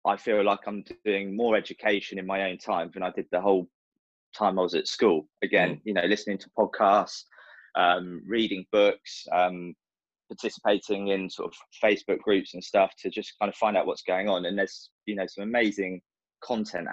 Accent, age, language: British, 20-39, English